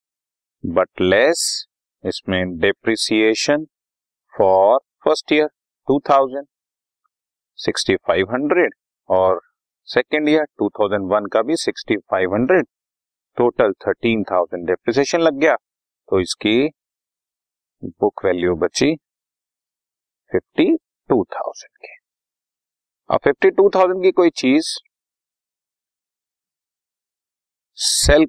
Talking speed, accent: 75 wpm, native